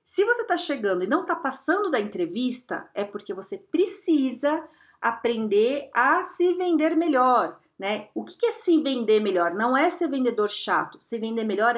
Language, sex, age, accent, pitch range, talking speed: Portuguese, female, 40-59, Brazilian, 240-340 Hz, 175 wpm